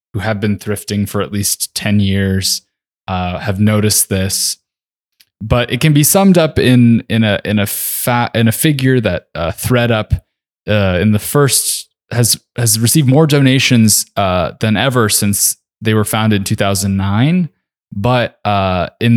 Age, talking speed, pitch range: 20-39, 165 wpm, 100-120 Hz